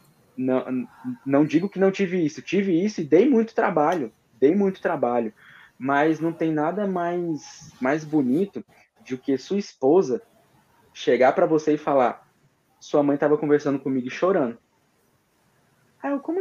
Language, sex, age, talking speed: Portuguese, male, 20-39, 150 wpm